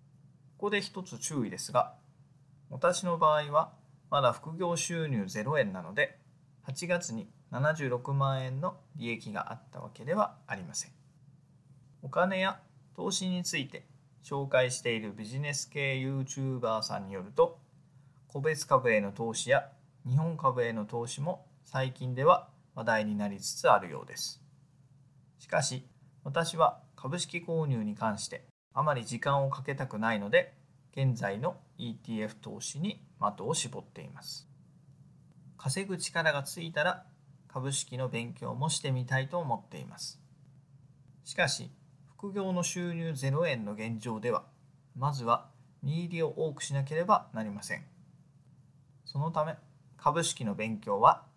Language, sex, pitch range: Japanese, male, 130-155 Hz